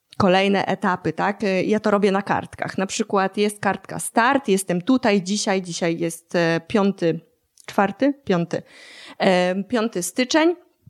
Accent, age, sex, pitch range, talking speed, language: native, 20-39, female, 180-240 Hz, 125 wpm, Polish